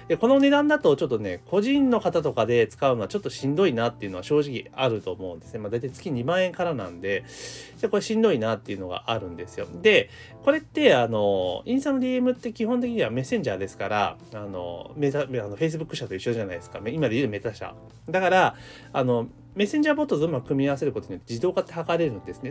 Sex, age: male, 30-49